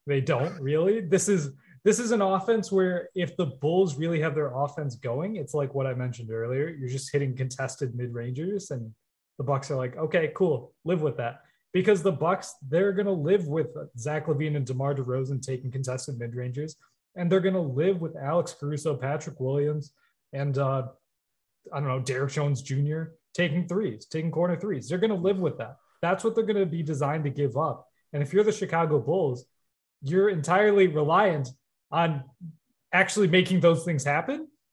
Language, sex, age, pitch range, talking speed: English, male, 20-39, 135-195 Hz, 190 wpm